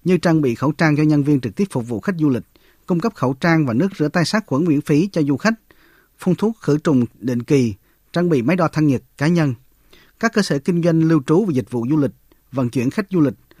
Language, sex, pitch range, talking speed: Vietnamese, male, 135-175 Hz, 270 wpm